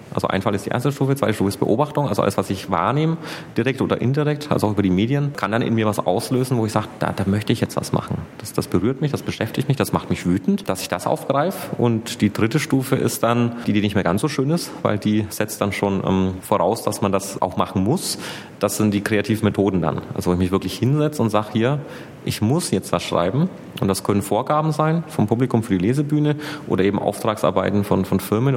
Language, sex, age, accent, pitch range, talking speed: German, male, 30-49, German, 100-135 Hz, 250 wpm